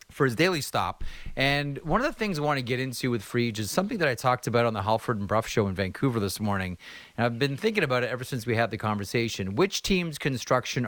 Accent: American